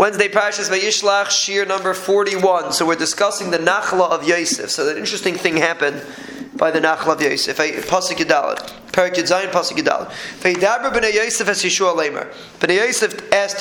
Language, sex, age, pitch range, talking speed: English, male, 20-39, 180-215 Hz, 165 wpm